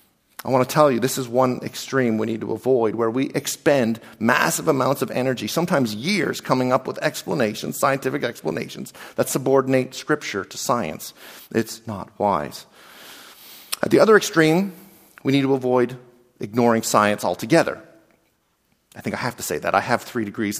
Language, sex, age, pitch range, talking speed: English, male, 40-59, 115-155 Hz, 170 wpm